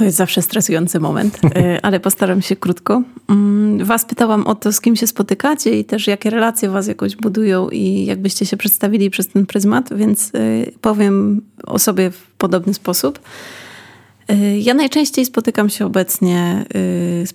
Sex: female